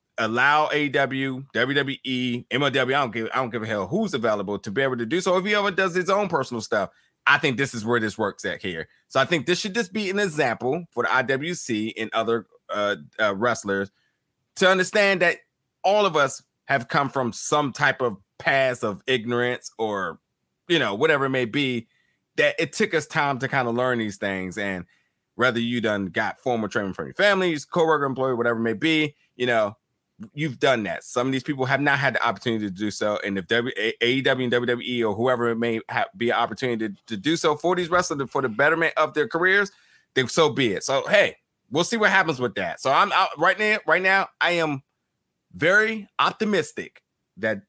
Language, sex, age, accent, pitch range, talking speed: English, male, 20-39, American, 115-160 Hz, 215 wpm